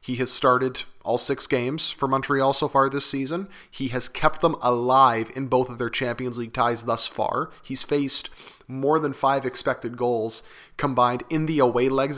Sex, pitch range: male, 125-145 Hz